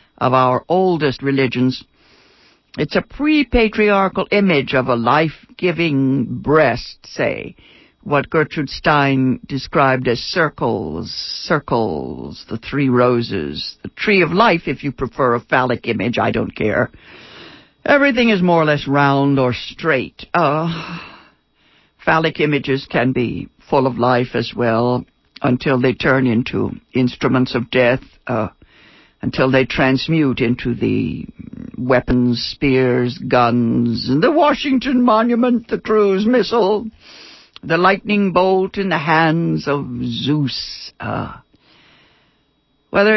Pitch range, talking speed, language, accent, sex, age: 130-180 Hz, 120 wpm, English, American, female, 60-79